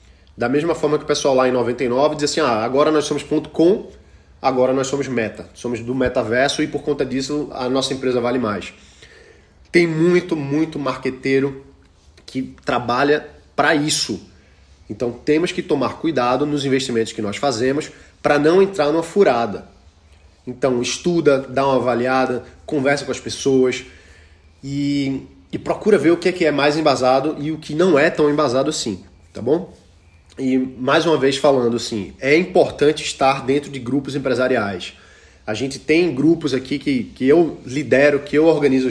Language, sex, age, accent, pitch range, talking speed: Portuguese, male, 20-39, Brazilian, 125-150 Hz, 170 wpm